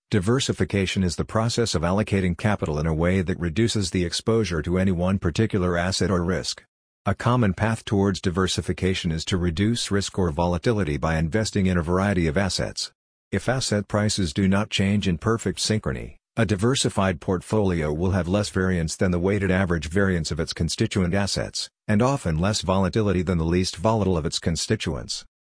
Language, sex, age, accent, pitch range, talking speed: English, male, 50-69, American, 90-105 Hz, 175 wpm